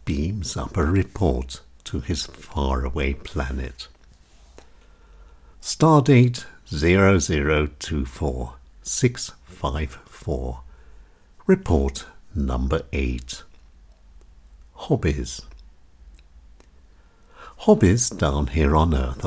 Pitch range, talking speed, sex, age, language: 65-95 Hz, 80 wpm, male, 60-79, English